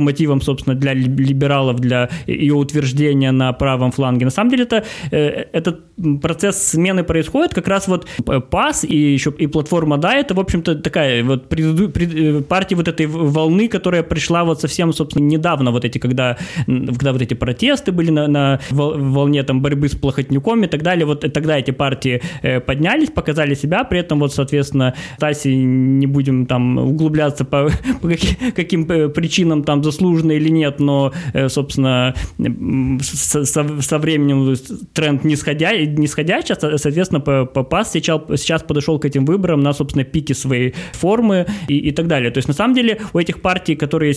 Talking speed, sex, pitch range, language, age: 165 wpm, male, 135-165 Hz, Russian, 20-39